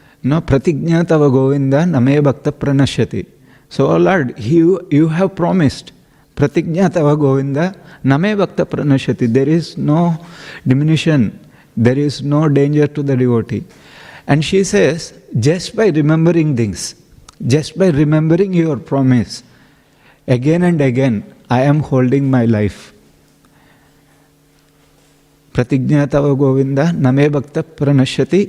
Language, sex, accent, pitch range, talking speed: English, male, Indian, 135-160 Hz, 110 wpm